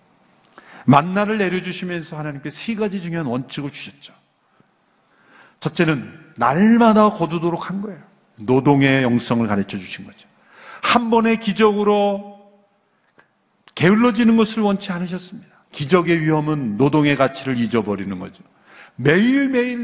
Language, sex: Korean, male